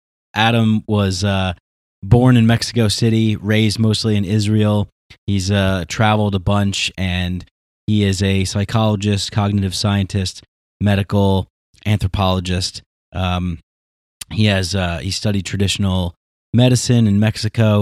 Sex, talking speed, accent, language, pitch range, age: male, 120 wpm, American, English, 90-105 Hz, 30-49